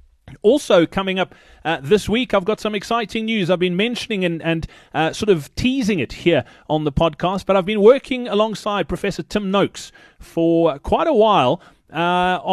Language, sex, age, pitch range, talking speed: English, male, 30-49, 155-195 Hz, 180 wpm